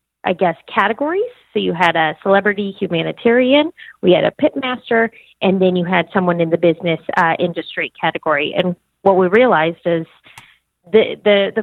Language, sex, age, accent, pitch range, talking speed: English, female, 30-49, American, 175-220 Hz, 170 wpm